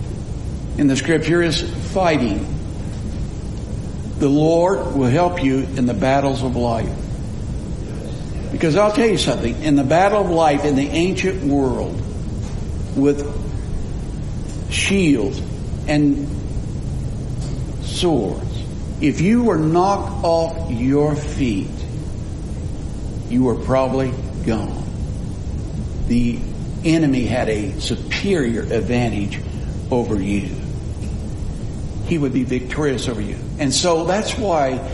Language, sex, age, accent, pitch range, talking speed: English, male, 60-79, American, 120-185 Hz, 105 wpm